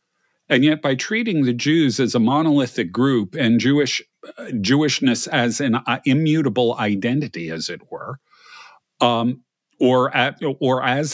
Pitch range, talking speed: 120-145 Hz, 145 wpm